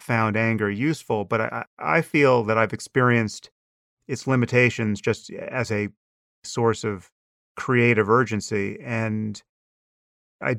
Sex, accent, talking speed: male, American, 120 wpm